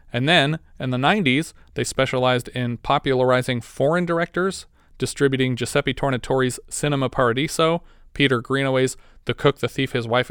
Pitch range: 125-145 Hz